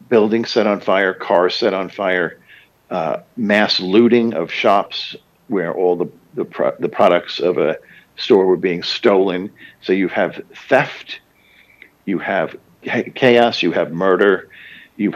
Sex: male